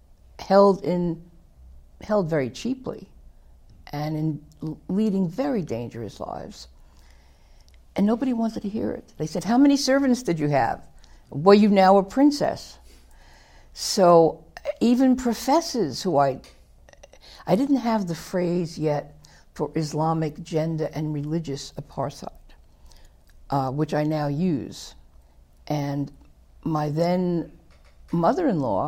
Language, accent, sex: English, American, female